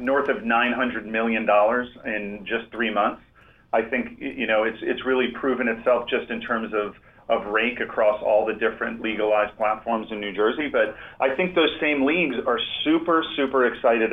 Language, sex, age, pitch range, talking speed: English, male, 40-59, 110-130 Hz, 185 wpm